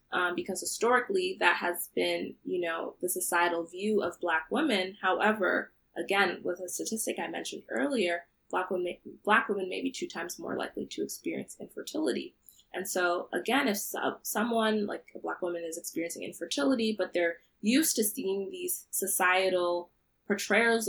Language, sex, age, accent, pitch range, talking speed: English, female, 20-39, American, 170-200 Hz, 155 wpm